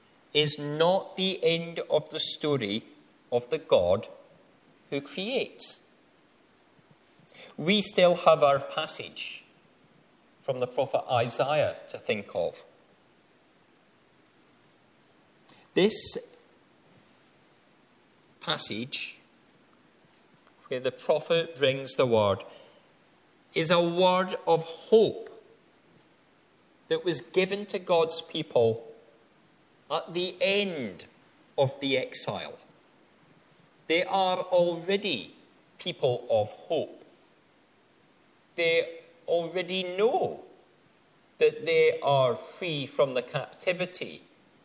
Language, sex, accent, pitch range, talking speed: English, male, British, 140-190 Hz, 85 wpm